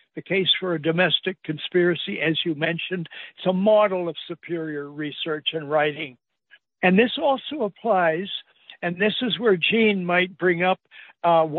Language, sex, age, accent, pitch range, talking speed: English, male, 60-79, American, 165-220 Hz, 155 wpm